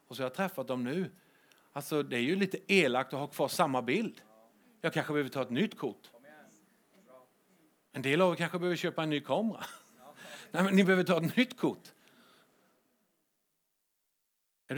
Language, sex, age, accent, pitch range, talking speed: English, male, 50-69, Swedish, 160-210 Hz, 180 wpm